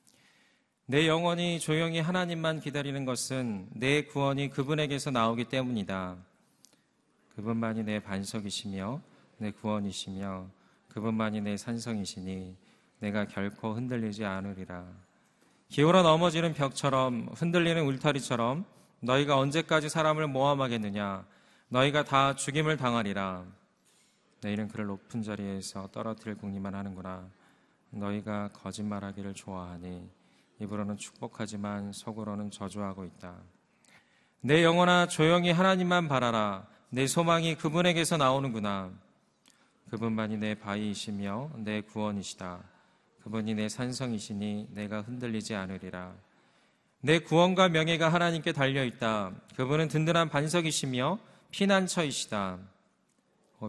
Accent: native